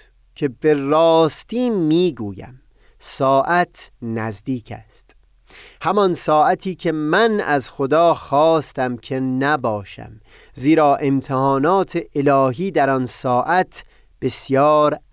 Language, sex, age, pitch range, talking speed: Persian, male, 30-49, 120-165 Hz, 90 wpm